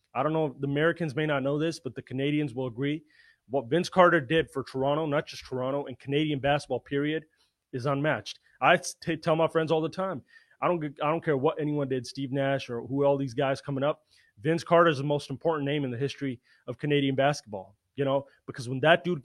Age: 30-49